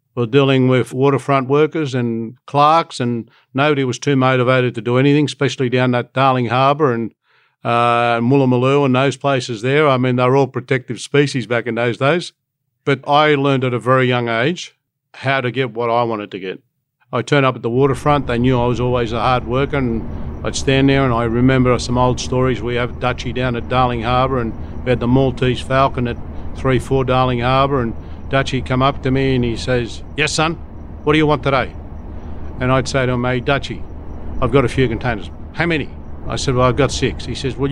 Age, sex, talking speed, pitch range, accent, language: 50-69, male, 215 wpm, 120-135 Hz, Australian, English